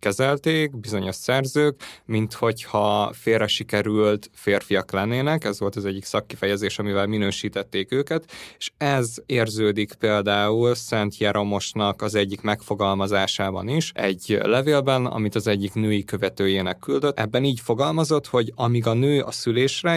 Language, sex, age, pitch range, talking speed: Hungarian, male, 20-39, 105-130 Hz, 130 wpm